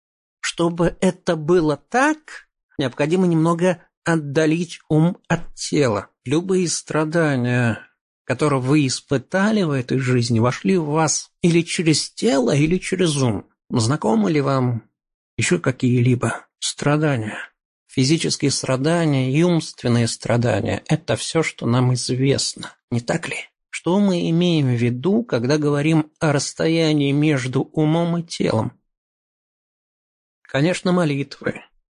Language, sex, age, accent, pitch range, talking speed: Russian, male, 50-69, native, 130-170 Hz, 115 wpm